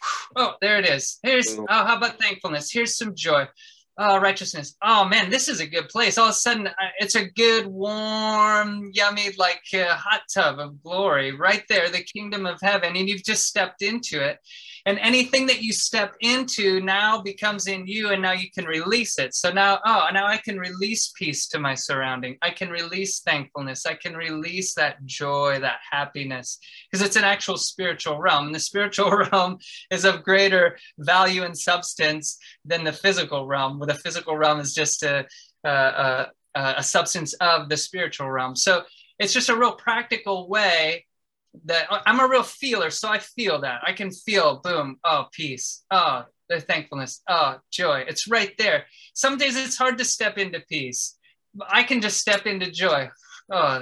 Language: English